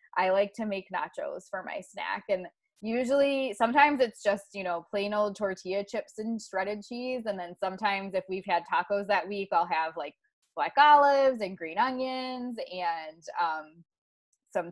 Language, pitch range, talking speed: English, 180-240 Hz, 170 wpm